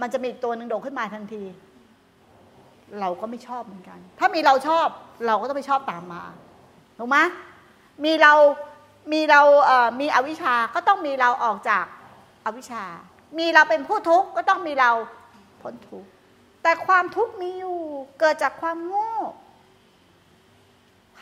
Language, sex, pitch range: Thai, female, 280-365 Hz